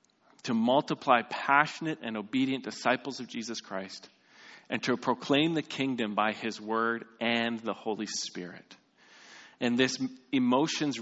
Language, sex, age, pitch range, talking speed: English, male, 40-59, 105-125 Hz, 130 wpm